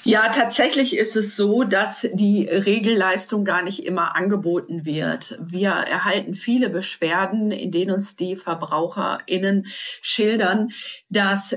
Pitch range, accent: 185-205 Hz, German